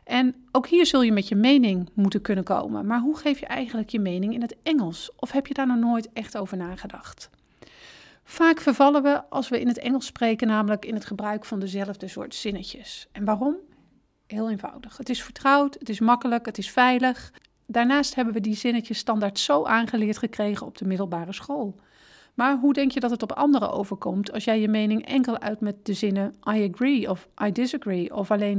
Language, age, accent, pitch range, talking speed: Dutch, 40-59, Dutch, 205-260 Hz, 205 wpm